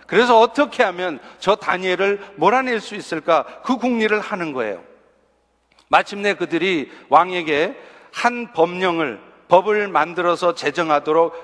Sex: male